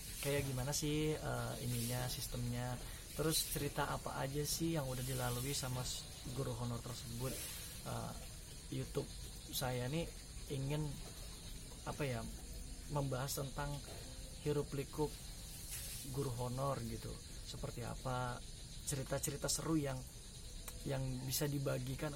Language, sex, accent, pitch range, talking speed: Indonesian, male, native, 125-145 Hz, 105 wpm